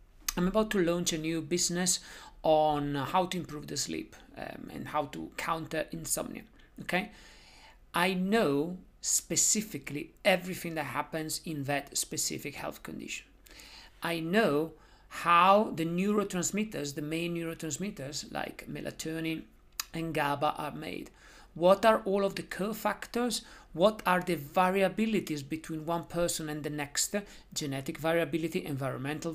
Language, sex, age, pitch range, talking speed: English, male, 50-69, 155-195 Hz, 130 wpm